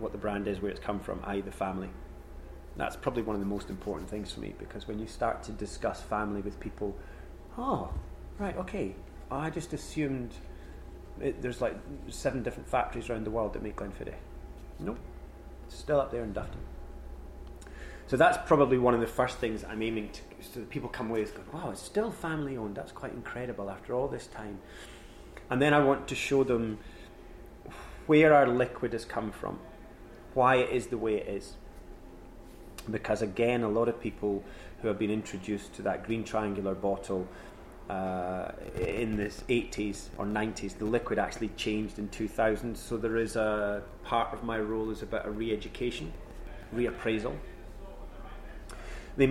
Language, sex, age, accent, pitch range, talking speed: English, male, 30-49, British, 90-115 Hz, 180 wpm